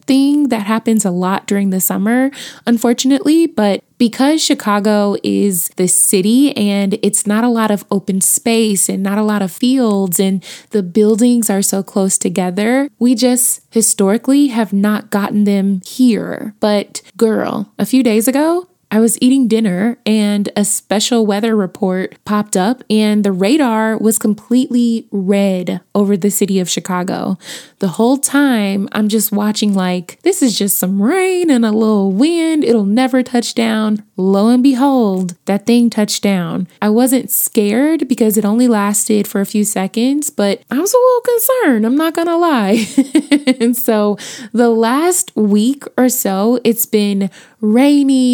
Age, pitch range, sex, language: 20-39, 200-255 Hz, female, English